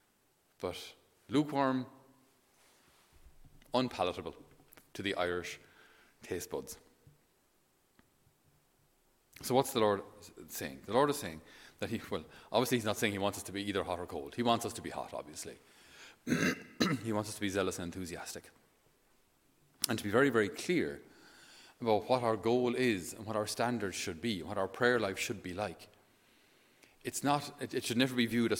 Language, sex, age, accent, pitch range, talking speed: English, male, 30-49, Irish, 95-120 Hz, 165 wpm